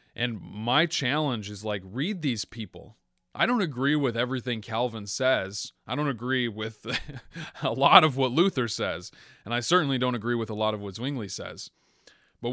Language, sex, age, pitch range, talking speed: English, male, 20-39, 105-135 Hz, 180 wpm